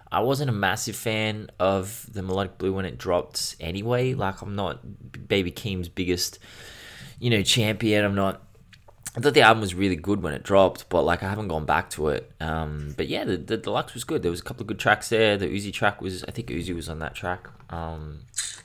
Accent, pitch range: Australian, 85-110 Hz